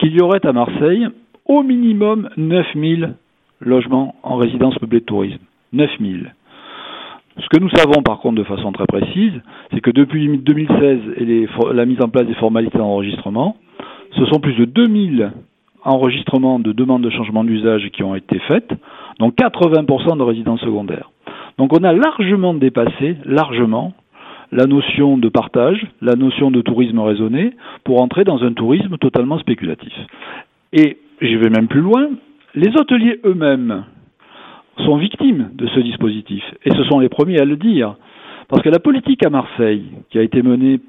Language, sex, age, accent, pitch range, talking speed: French, male, 40-59, French, 120-180 Hz, 165 wpm